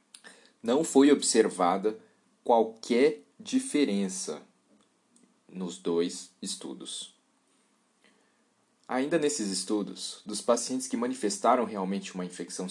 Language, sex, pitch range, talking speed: Portuguese, male, 105-145 Hz, 85 wpm